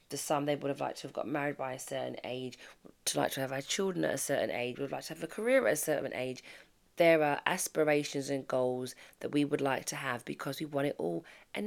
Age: 20-39